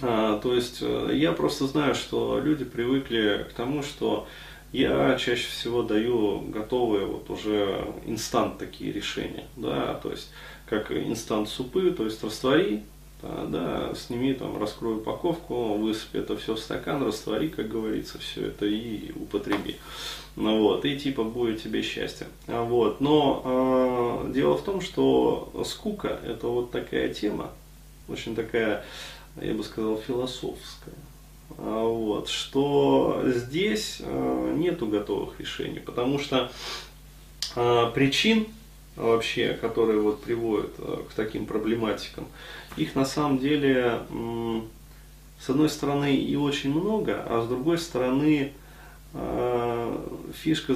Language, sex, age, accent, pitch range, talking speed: Russian, male, 20-39, native, 110-140 Hz, 125 wpm